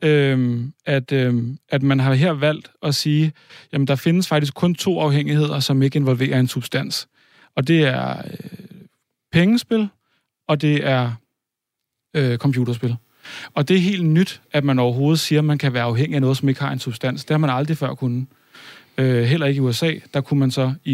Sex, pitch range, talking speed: male, 130-160 Hz, 200 wpm